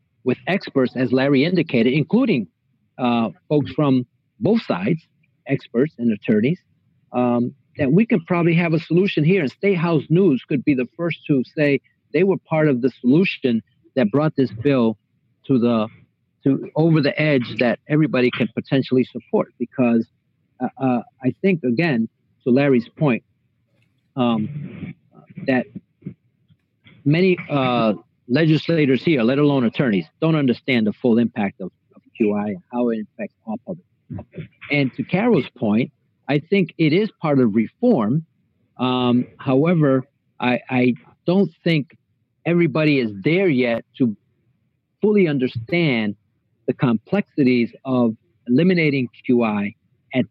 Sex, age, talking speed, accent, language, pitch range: male, 50-69, 140 wpm, American, English, 120-160 Hz